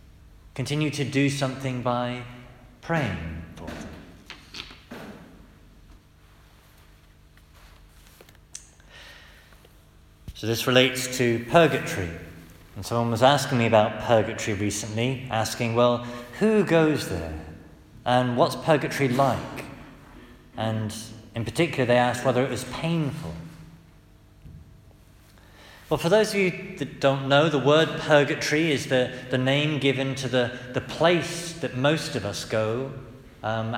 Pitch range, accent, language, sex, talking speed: 100-140 Hz, British, English, male, 115 wpm